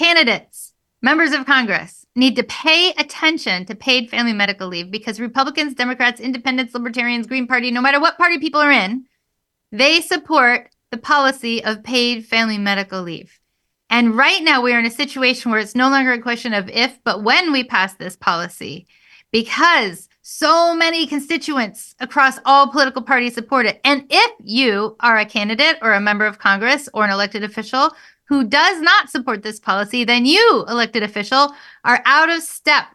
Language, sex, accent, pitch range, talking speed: English, female, American, 230-300 Hz, 175 wpm